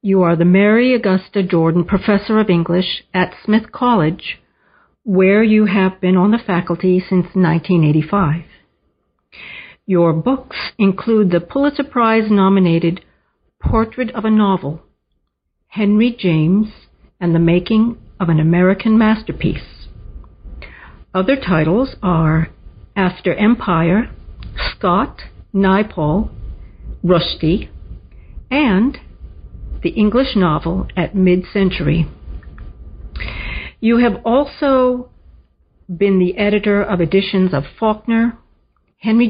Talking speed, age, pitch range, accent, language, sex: 100 wpm, 60-79, 170-215 Hz, American, English, female